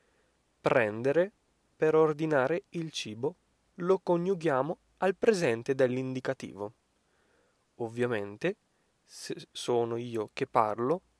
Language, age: Italian, 20-39